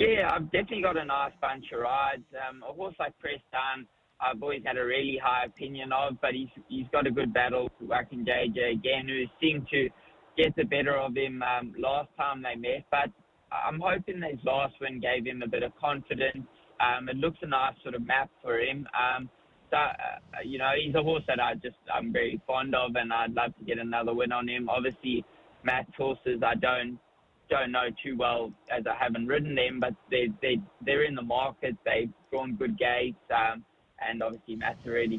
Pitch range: 120-135 Hz